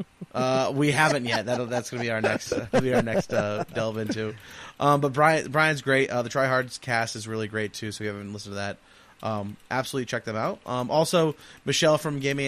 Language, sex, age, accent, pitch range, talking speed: English, male, 30-49, American, 110-140 Hz, 230 wpm